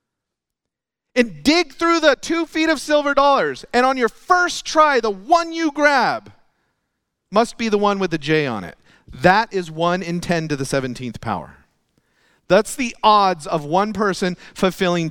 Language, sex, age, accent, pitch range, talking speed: English, male, 40-59, American, 120-190 Hz, 170 wpm